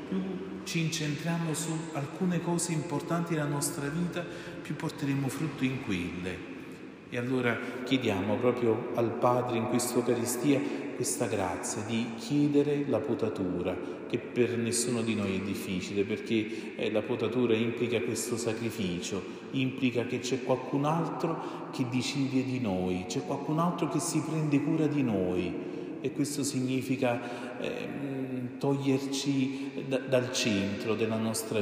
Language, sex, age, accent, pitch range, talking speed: Italian, male, 40-59, native, 115-140 Hz, 135 wpm